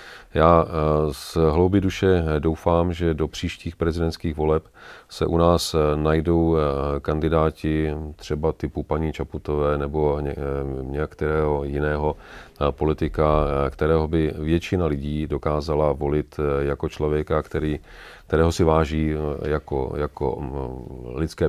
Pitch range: 75-80 Hz